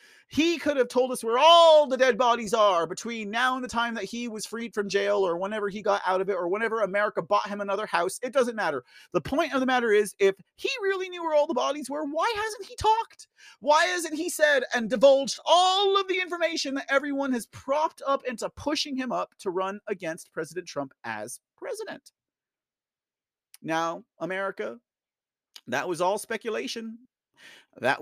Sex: male